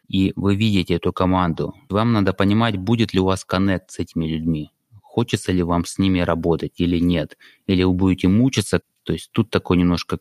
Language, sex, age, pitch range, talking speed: English, male, 20-39, 90-110 Hz, 195 wpm